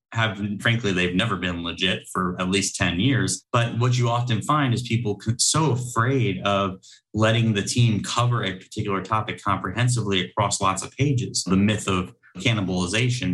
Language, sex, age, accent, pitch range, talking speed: English, male, 30-49, American, 100-125 Hz, 165 wpm